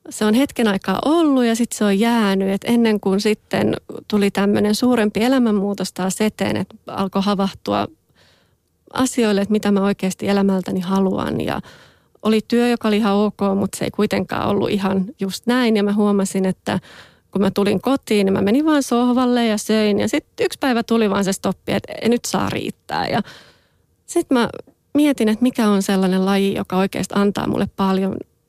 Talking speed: 185 wpm